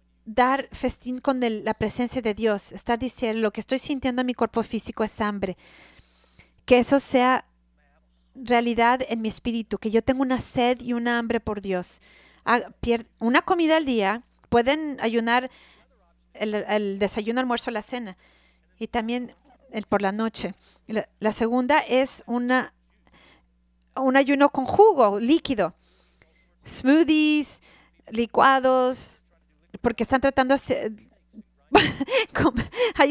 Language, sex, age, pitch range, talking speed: English, female, 40-59, 220-275 Hz, 130 wpm